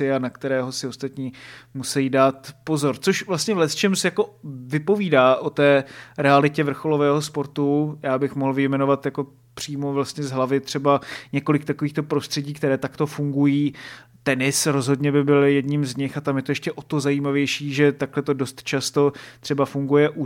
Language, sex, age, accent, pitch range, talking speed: Czech, male, 20-39, native, 135-145 Hz, 175 wpm